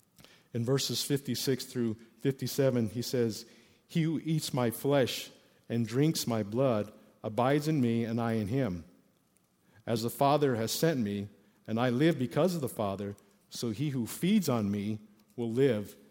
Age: 50-69